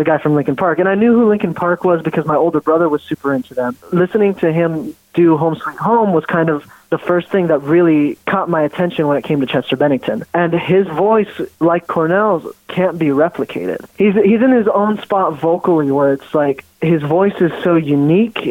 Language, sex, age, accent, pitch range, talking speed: English, male, 20-39, American, 150-175 Hz, 215 wpm